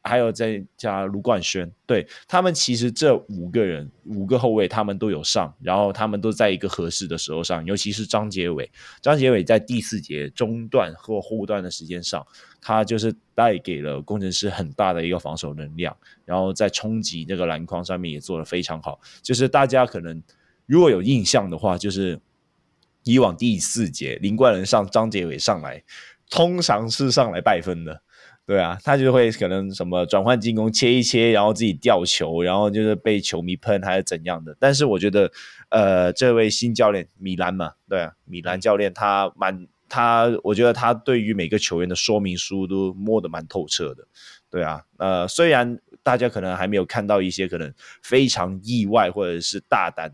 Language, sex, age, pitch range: Chinese, male, 20-39, 90-115 Hz